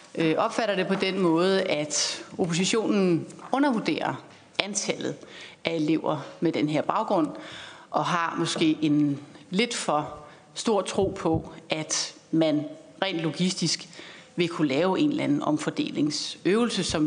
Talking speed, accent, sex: 125 wpm, native, female